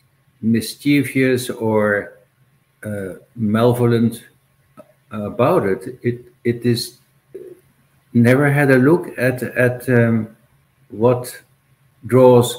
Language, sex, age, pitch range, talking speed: English, male, 60-79, 120-135 Hz, 85 wpm